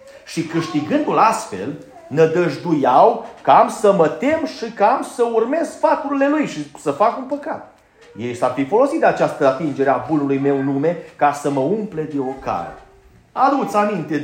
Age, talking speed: 30-49, 165 wpm